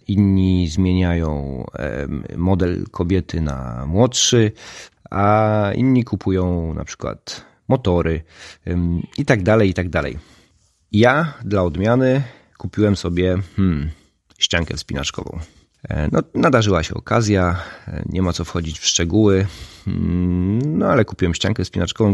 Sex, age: male, 30-49